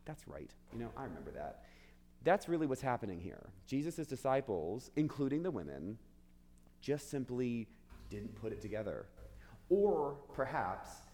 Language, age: English, 30-49